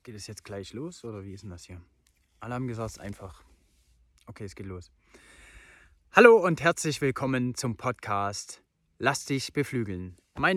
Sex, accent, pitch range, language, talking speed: male, German, 95-125 Hz, German, 165 wpm